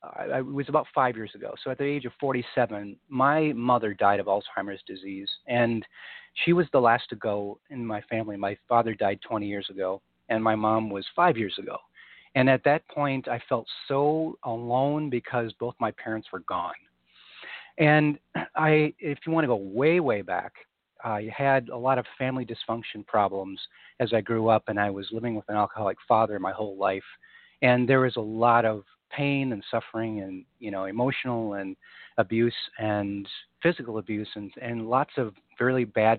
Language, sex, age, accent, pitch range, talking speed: English, male, 40-59, American, 105-130 Hz, 190 wpm